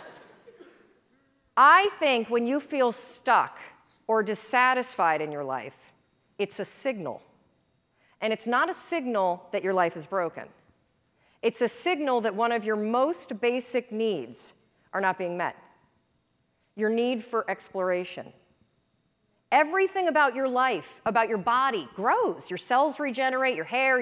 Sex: female